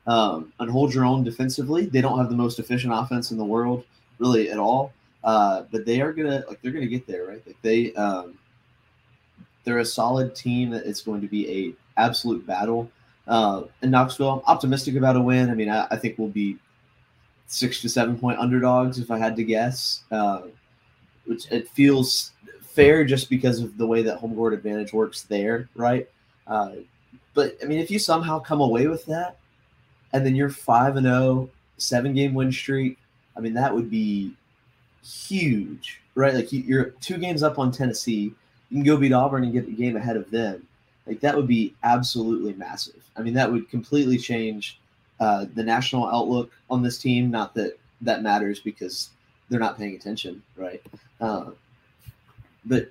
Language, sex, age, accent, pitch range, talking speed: English, male, 20-39, American, 115-130 Hz, 185 wpm